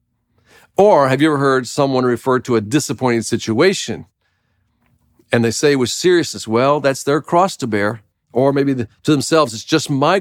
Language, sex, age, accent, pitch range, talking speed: English, male, 50-69, American, 115-165 Hz, 170 wpm